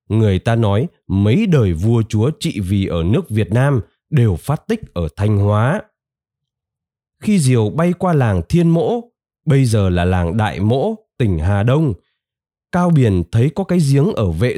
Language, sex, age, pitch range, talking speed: Vietnamese, male, 20-39, 105-165 Hz, 175 wpm